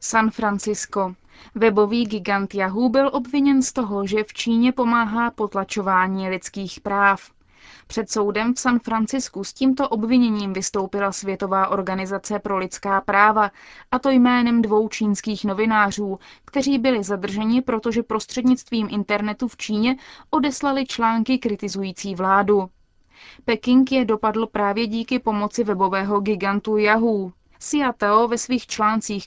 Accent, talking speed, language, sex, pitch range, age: native, 125 wpm, Czech, female, 200-235 Hz, 20-39